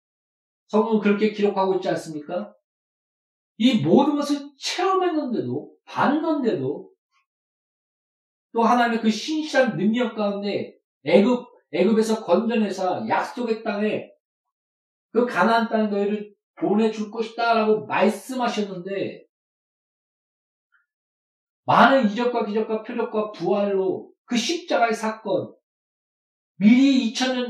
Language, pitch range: Korean, 210-260 Hz